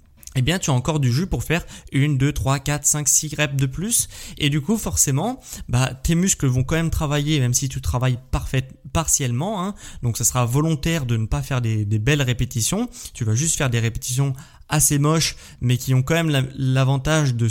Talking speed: 220 wpm